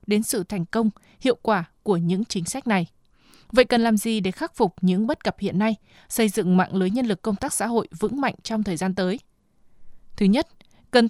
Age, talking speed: 20-39, 225 wpm